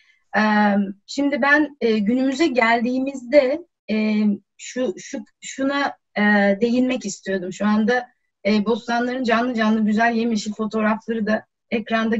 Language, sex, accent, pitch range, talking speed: Turkish, female, native, 215-285 Hz, 95 wpm